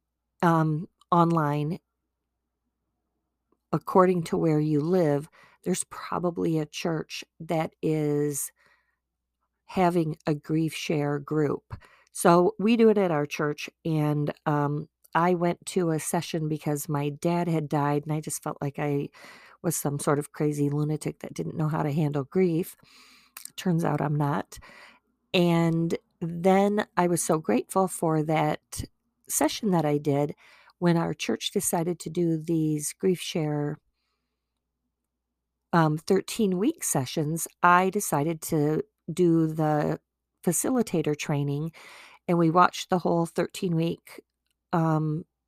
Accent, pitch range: American, 150-180 Hz